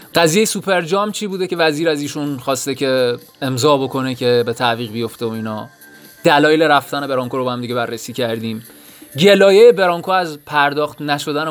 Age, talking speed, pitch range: 20-39, 170 wpm, 120-150 Hz